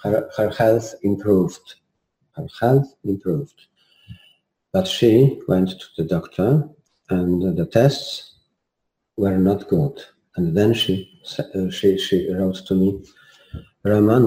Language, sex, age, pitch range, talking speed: English, male, 50-69, 90-110 Hz, 120 wpm